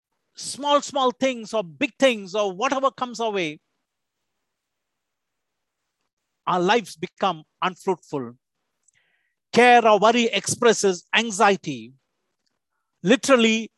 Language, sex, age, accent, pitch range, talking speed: English, male, 50-69, Indian, 195-255 Hz, 90 wpm